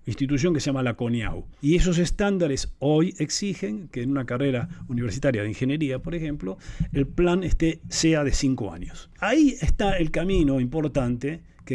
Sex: male